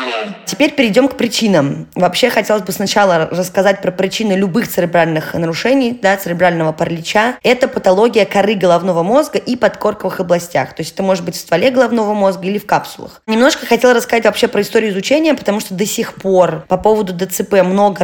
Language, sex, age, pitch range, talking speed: Russian, female, 20-39, 180-225 Hz, 175 wpm